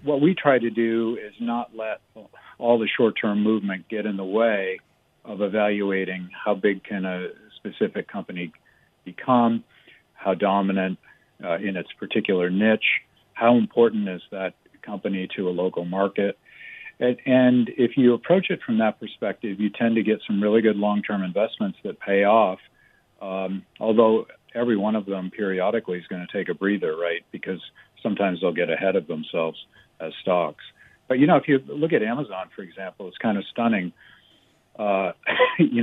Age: 50-69